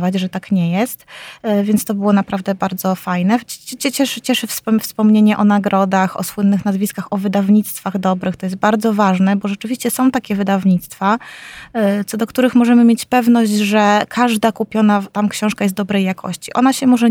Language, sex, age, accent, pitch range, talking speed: Polish, female, 20-39, native, 195-225 Hz, 165 wpm